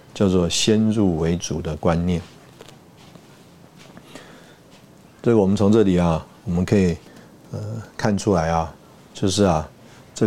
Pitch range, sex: 85-105 Hz, male